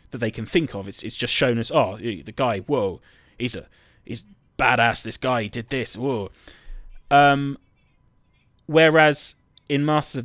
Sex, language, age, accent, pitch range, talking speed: male, English, 30-49, British, 110-135 Hz, 165 wpm